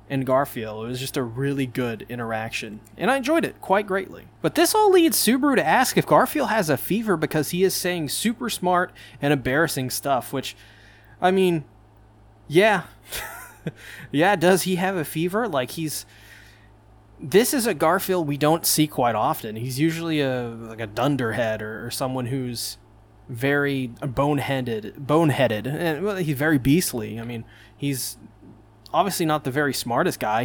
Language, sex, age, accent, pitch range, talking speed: English, male, 20-39, American, 115-165 Hz, 165 wpm